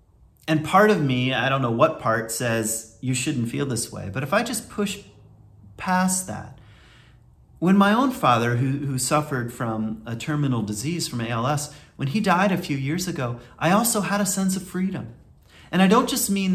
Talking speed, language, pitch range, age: 195 wpm, English, 110-170 Hz, 30-49